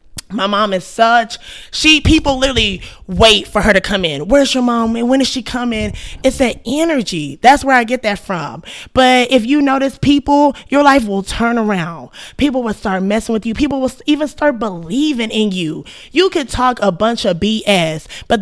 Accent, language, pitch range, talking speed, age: American, English, 200-265 Hz, 200 wpm, 20-39